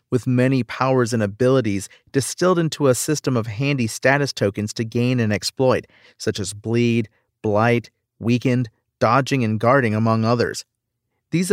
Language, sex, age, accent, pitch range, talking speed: English, male, 40-59, American, 110-135 Hz, 145 wpm